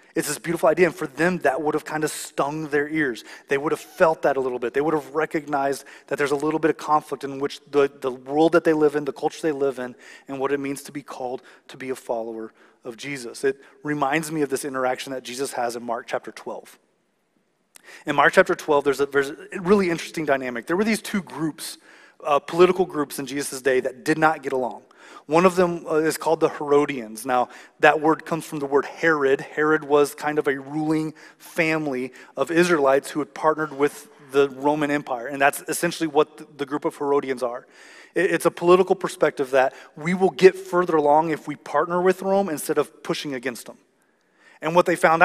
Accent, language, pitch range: American, English, 140-170 Hz